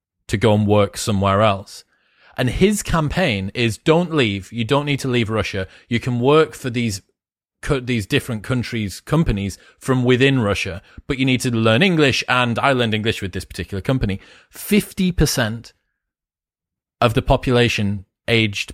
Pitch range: 110-135 Hz